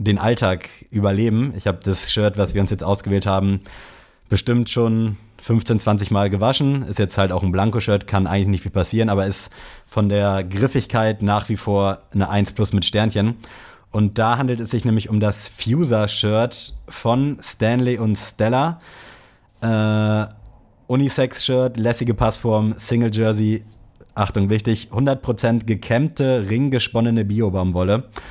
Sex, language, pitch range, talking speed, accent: male, German, 100-115 Hz, 140 wpm, German